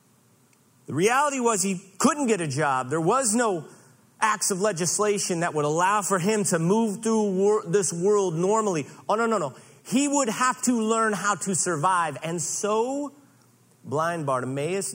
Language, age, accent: English, 40-59, American